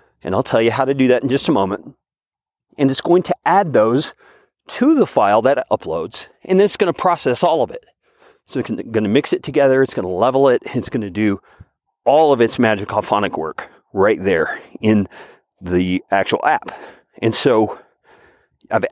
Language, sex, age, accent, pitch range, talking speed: English, male, 40-59, American, 115-175 Hz, 205 wpm